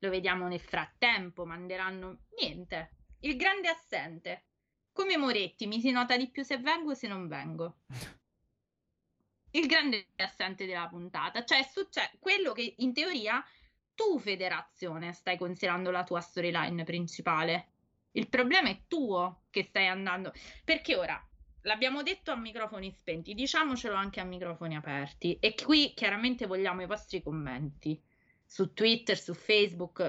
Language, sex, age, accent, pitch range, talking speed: Italian, female, 20-39, native, 180-270 Hz, 140 wpm